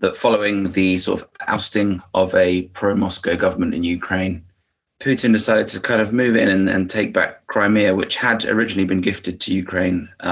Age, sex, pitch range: 20-39, male, 90-100 Hz